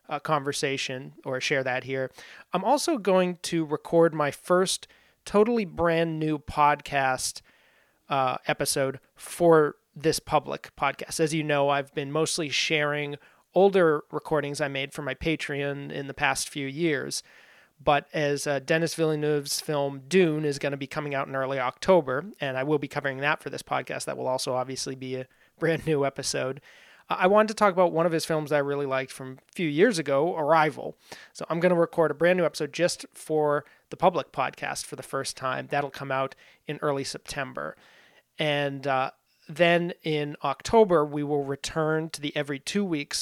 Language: English